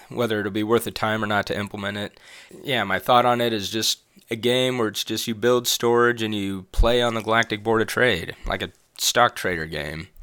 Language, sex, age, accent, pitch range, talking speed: English, male, 20-39, American, 100-120 Hz, 235 wpm